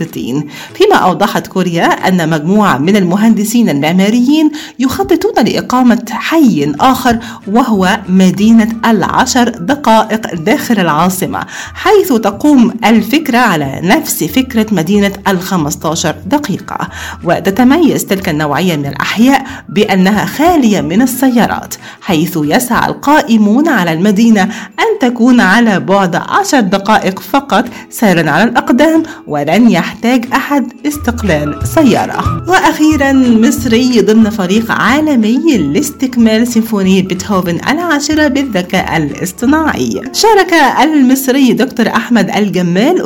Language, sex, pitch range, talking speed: Arabic, female, 190-270 Hz, 100 wpm